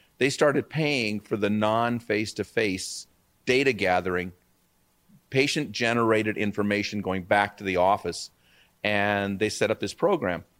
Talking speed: 120 wpm